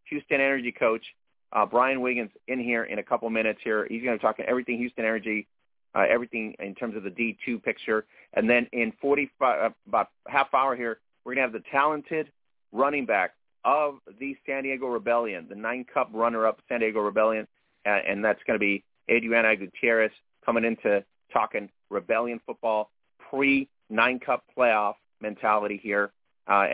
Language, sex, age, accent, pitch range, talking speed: English, male, 40-59, American, 110-130 Hz, 175 wpm